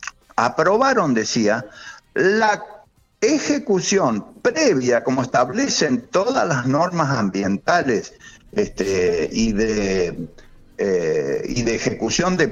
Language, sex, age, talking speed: Spanish, male, 60-79, 75 wpm